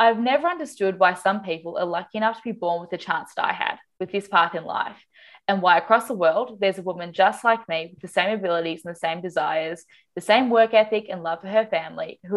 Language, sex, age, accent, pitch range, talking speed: English, female, 10-29, Australian, 170-220 Hz, 250 wpm